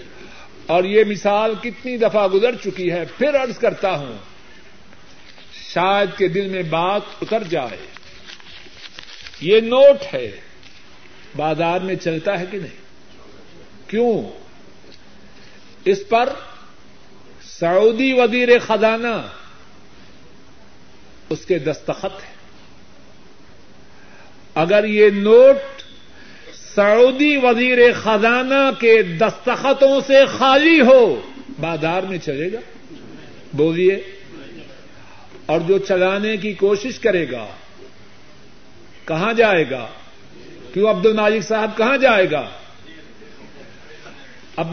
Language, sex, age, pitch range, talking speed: Urdu, male, 60-79, 180-245 Hz, 100 wpm